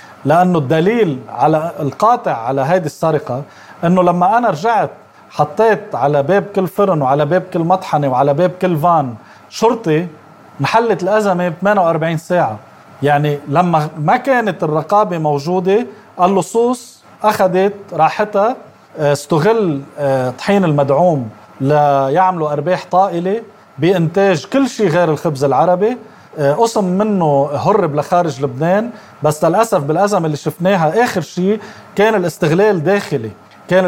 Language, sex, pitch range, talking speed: Arabic, male, 150-215 Hz, 120 wpm